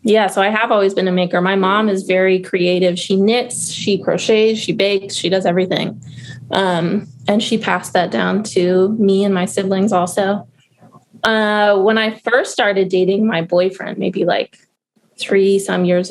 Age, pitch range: 20-39, 185-225 Hz